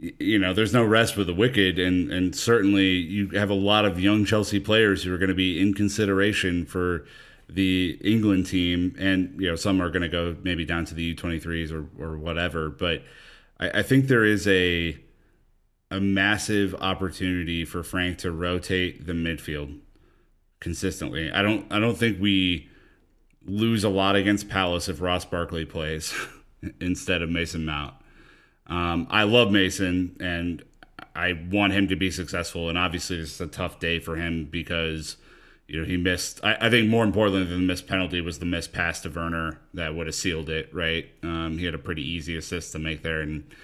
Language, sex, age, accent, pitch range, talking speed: English, male, 30-49, American, 85-100 Hz, 190 wpm